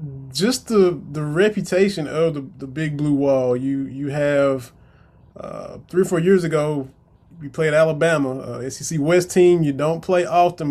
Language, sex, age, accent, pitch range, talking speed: English, male, 20-39, American, 145-180 Hz, 170 wpm